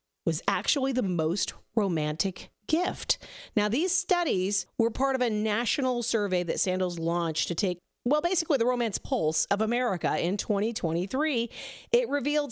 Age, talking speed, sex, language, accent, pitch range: 40-59, 150 wpm, female, English, American, 180-265 Hz